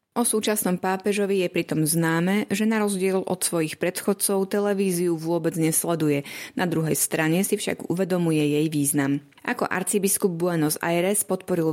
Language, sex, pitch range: Slovak, female, 165-195 Hz